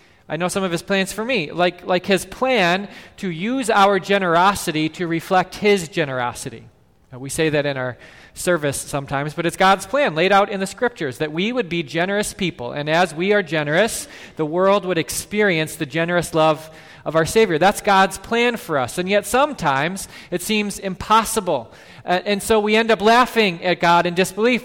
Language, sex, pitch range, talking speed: English, male, 170-225 Hz, 190 wpm